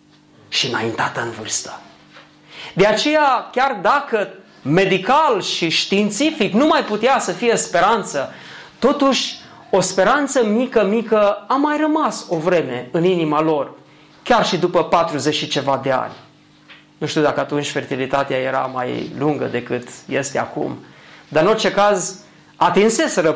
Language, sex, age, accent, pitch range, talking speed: Romanian, male, 30-49, native, 145-205 Hz, 135 wpm